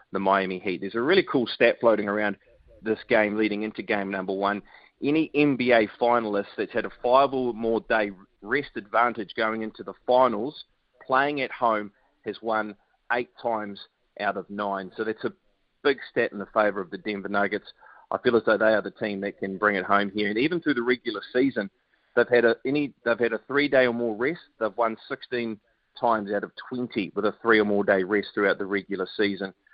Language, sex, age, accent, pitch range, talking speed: English, male, 30-49, Australian, 105-120 Hz, 210 wpm